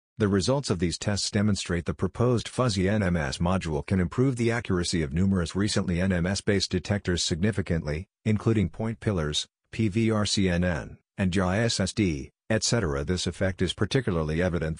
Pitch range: 90-105 Hz